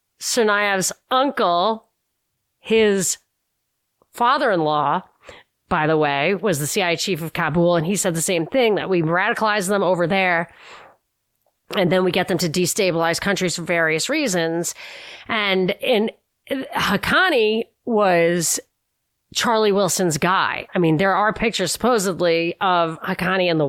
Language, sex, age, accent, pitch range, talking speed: English, female, 30-49, American, 170-205 Hz, 135 wpm